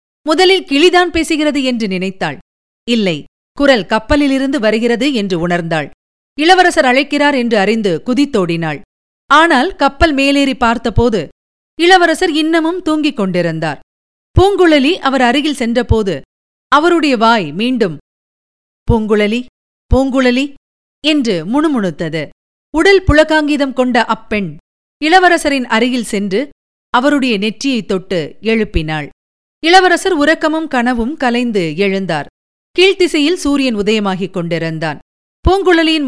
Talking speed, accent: 95 wpm, native